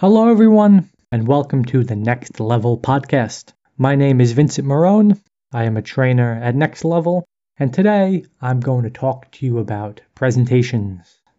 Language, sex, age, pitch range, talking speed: English, male, 20-39, 120-160 Hz, 165 wpm